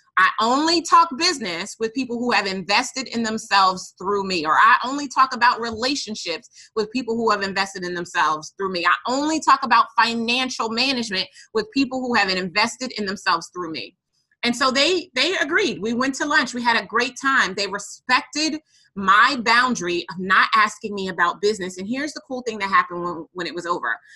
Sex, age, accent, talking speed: female, 30-49, American, 195 wpm